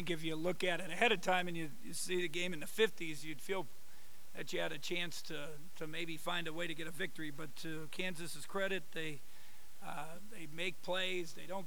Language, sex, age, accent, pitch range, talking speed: English, male, 50-69, American, 175-205 Hz, 230 wpm